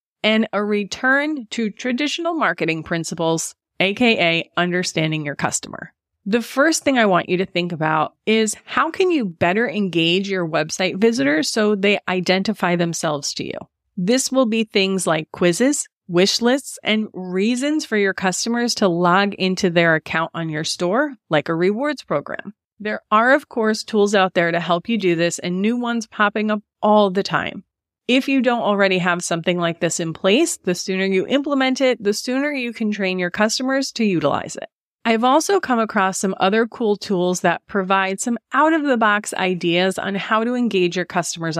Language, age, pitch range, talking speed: English, 30-49, 180-235 Hz, 180 wpm